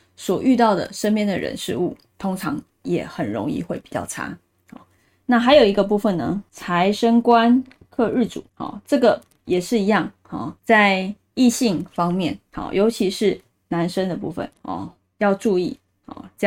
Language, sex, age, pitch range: Chinese, female, 20-39, 185-240 Hz